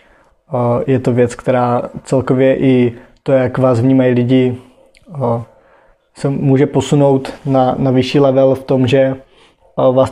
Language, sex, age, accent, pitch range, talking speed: Czech, male, 20-39, native, 125-135 Hz, 130 wpm